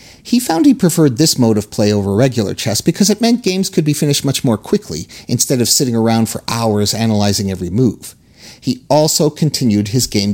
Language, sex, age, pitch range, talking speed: English, male, 40-59, 110-160 Hz, 205 wpm